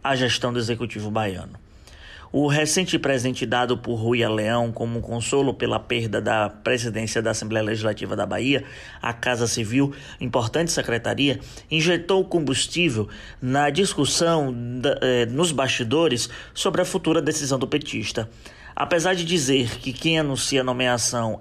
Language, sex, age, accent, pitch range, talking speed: Portuguese, male, 20-39, Brazilian, 115-155 Hz, 135 wpm